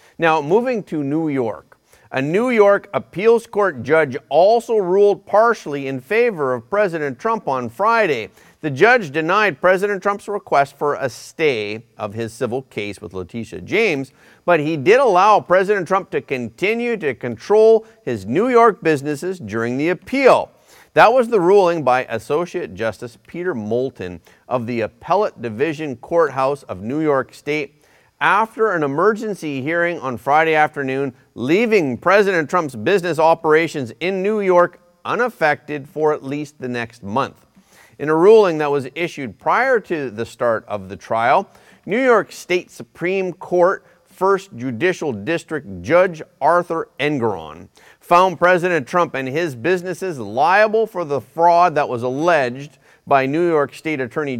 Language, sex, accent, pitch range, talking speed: English, male, American, 130-185 Hz, 150 wpm